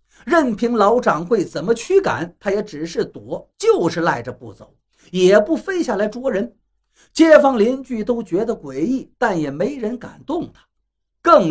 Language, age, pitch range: Chinese, 50-69, 155-245 Hz